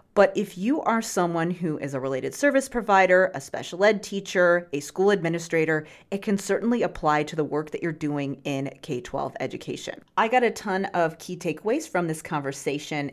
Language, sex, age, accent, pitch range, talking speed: English, female, 30-49, American, 150-195 Hz, 185 wpm